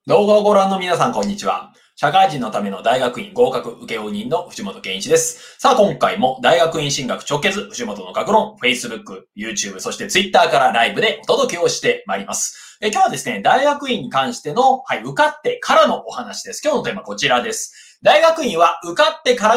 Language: Japanese